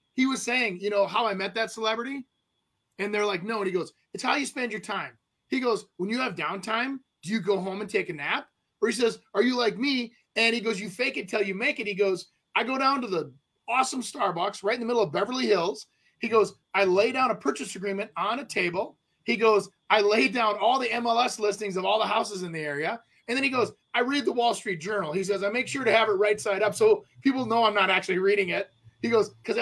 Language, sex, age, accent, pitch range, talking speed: English, male, 30-49, American, 200-245 Hz, 260 wpm